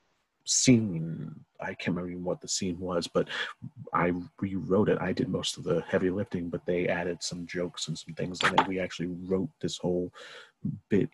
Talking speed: 190 wpm